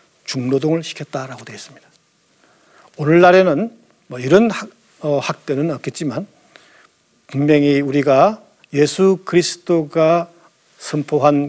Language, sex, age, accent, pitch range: Korean, male, 50-69, native, 140-180 Hz